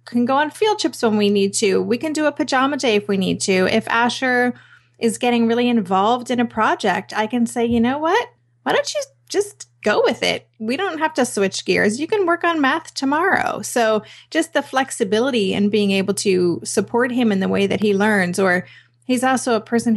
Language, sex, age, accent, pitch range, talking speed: English, female, 30-49, American, 200-245 Hz, 220 wpm